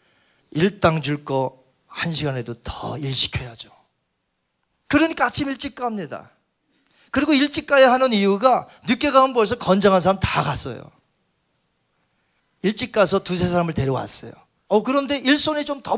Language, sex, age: Korean, male, 40-59